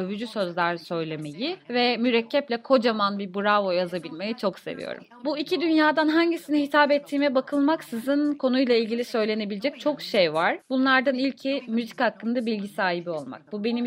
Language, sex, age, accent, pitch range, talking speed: Turkish, female, 30-49, native, 190-265 Hz, 145 wpm